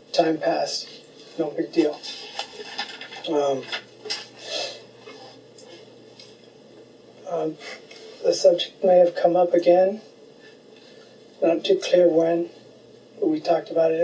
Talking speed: 100 wpm